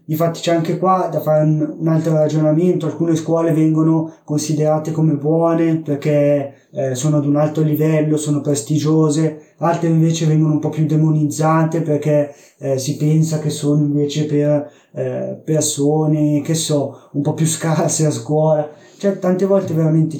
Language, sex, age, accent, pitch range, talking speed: Italian, male, 20-39, native, 150-165 Hz, 155 wpm